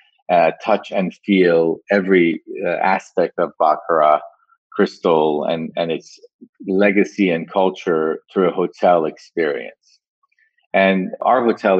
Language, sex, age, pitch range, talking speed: English, male, 40-59, 85-105 Hz, 115 wpm